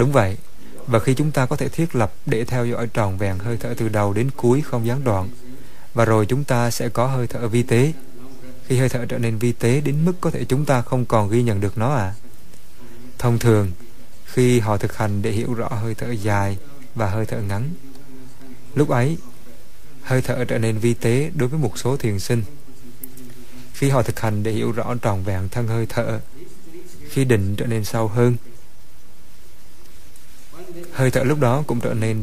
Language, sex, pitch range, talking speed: Vietnamese, male, 110-130 Hz, 205 wpm